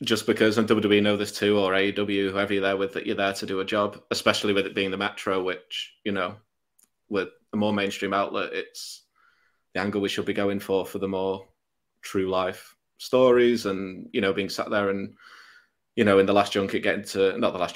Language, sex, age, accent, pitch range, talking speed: English, male, 20-39, British, 95-105 Hz, 225 wpm